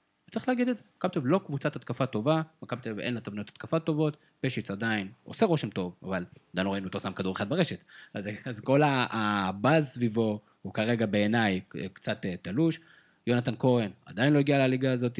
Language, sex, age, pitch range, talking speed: Hebrew, male, 20-39, 110-145 Hz, 205 wpm